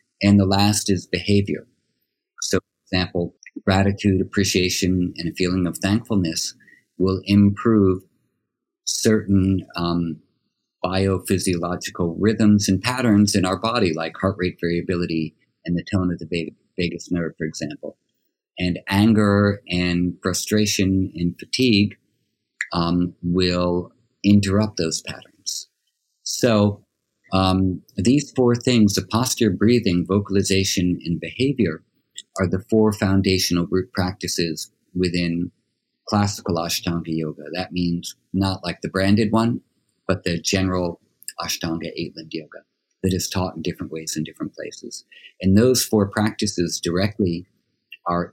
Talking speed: 125 wpm